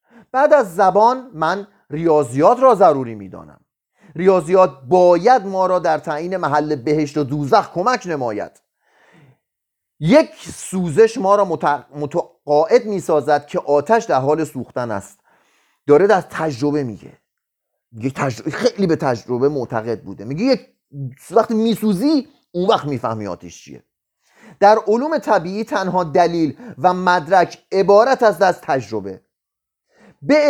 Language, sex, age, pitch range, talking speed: Persian, male, 30-49, 155-220 Hz, 125 wpm